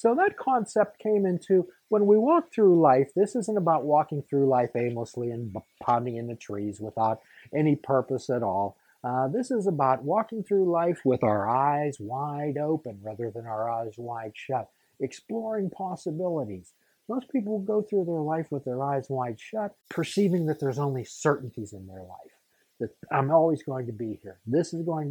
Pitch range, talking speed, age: 115-175 Hz, 180 wpm, 50-69